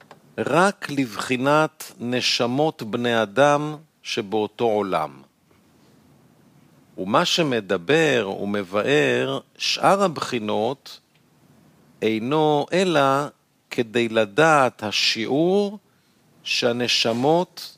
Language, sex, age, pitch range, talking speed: Hebrew, male, 50-69, 115-155 Hz, 60 wpm